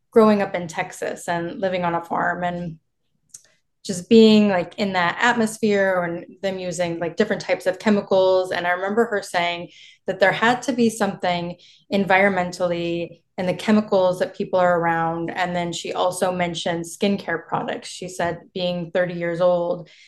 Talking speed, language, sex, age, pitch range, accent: 165 wpm, English, female, 20-39, 175-205 Hz, American